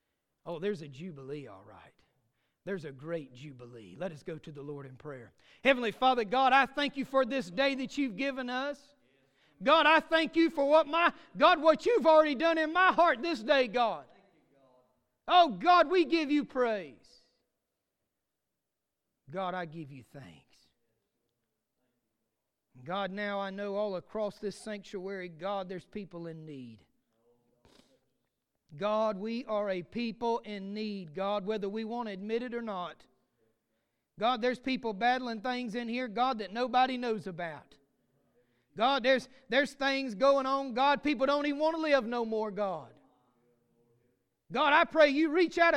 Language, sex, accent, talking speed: English, male, American, 160 wpm